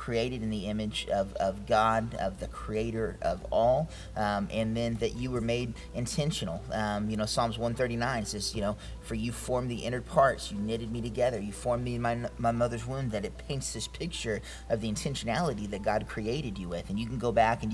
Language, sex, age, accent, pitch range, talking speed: English, male, 30-49, American, 105-120 Hz, 220 wpm